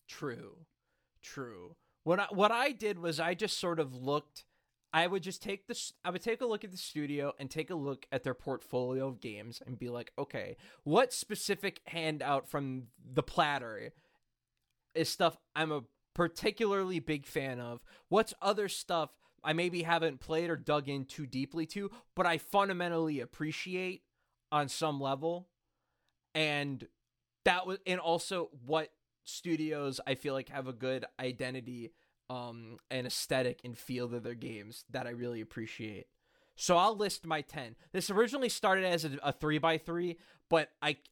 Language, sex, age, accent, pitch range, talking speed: English, male, 20-39, American, 130-185 Hz, 170 wpm